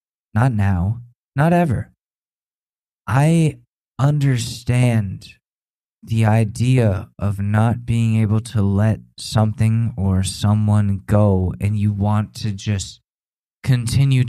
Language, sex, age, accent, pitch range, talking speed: English, male, 20-39, American, 100-120 Hz, 100 wpm